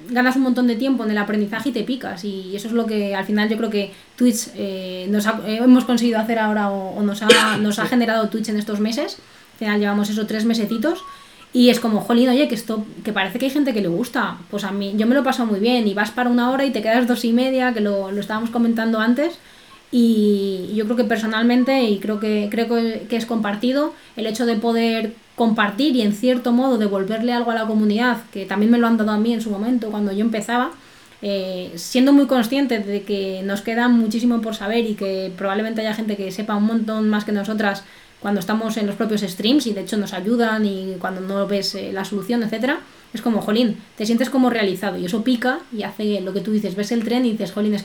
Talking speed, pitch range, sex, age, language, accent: 240 wpm, 205-245 Hz, female, 20-39, Spanish, Spanish